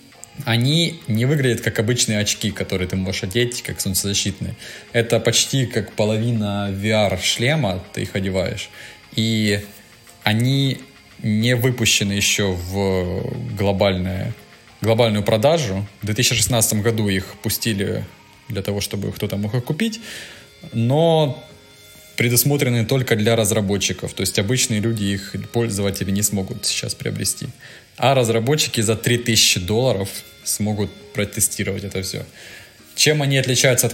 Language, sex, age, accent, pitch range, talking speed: Russian, male, 20-39, native, 100-120 Hz, 120 wpm